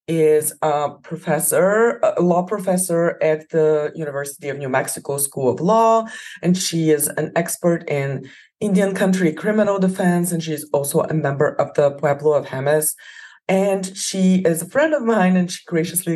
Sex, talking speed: female, 165 wpm